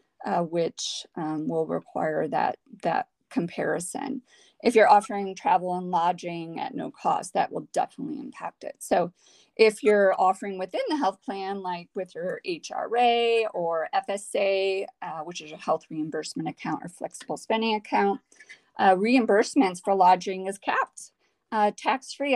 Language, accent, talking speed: English, American, 150 wpm